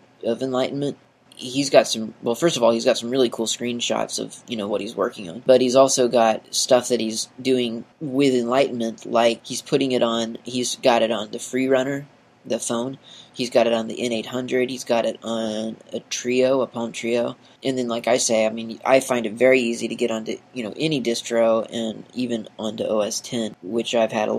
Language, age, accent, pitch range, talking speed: English, 30-49, American, 115-125 Hz, 220 wpm